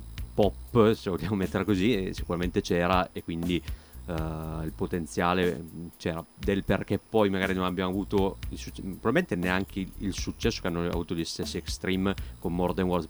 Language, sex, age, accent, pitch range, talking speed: Italian, male, 30-49, native, 85-100 Hz, 160 wpm